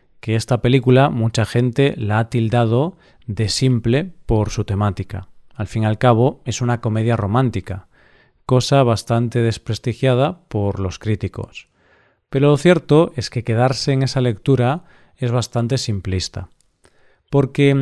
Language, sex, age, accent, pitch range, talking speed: Spanish, male, 40-59, Spanish, 115-140 Hz, 135 wpm